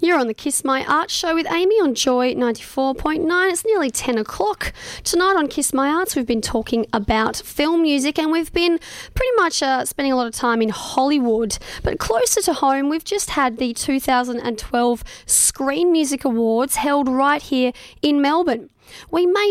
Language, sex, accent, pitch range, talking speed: English, female, Australian, 235-295 Hz, 180 wpm